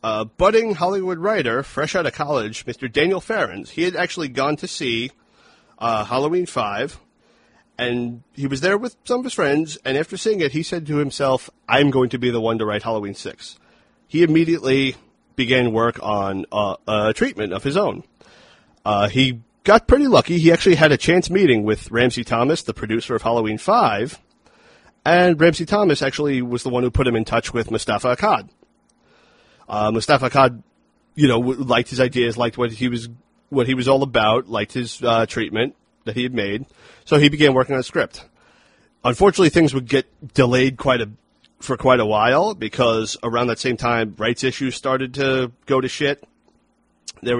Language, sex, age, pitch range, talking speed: English, male, 40-59, 115-150 Hz, 190 wpm